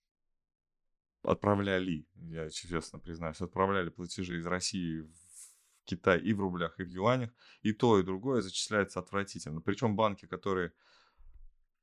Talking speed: 125 wpm